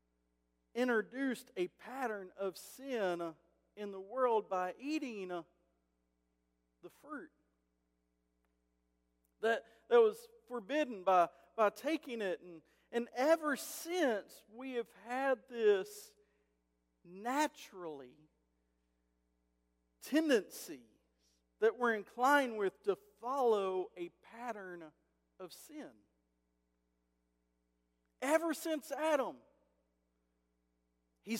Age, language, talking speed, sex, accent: 50-69, English, 85 wpm, male, American